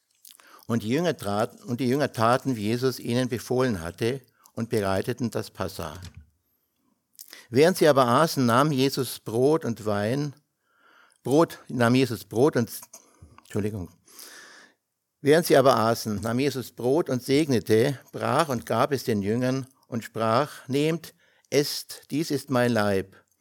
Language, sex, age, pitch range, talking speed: German, male, 60-79, 105-130 Hz, 140 wpm